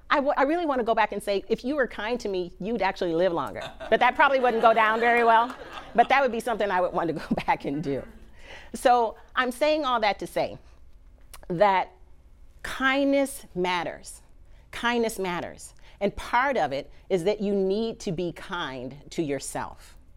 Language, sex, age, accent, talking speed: English, female, 40-59, American, 195 wpm